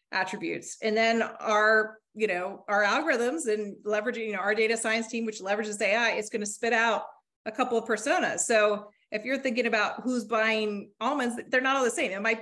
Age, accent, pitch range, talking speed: 30-49, American, 205-245 Hz, 200 wpm